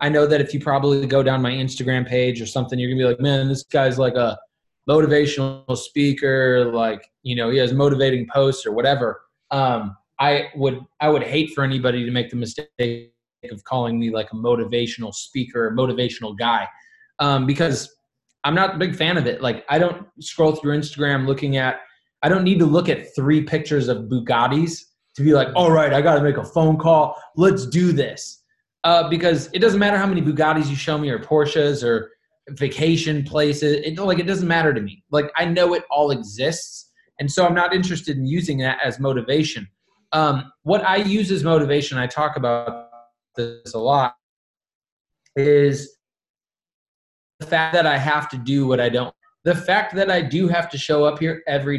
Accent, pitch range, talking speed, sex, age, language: American, 130-160 Hz, 195 wpm, male, 20-39, English